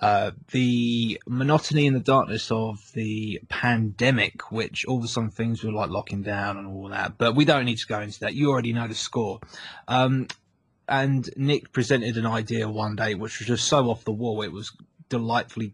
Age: 20-39